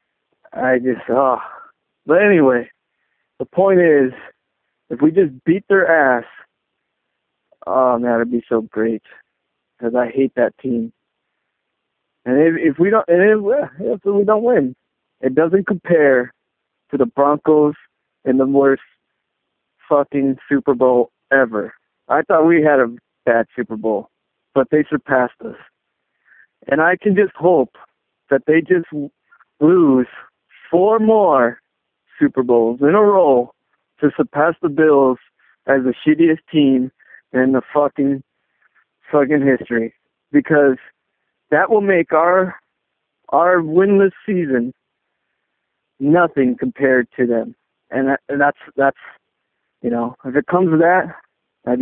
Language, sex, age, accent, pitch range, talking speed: English, male, 50-69, American, 125-165 Hz, 135 wpm